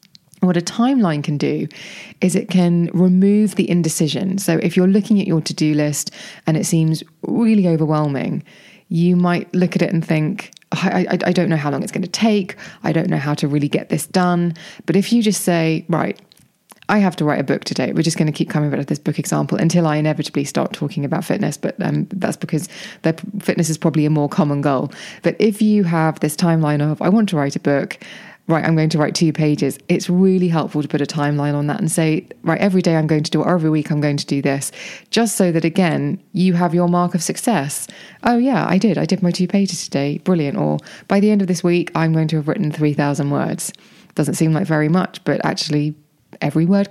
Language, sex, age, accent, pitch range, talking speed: English, female, 20-39, British, 155-195 Hz, 235 wpm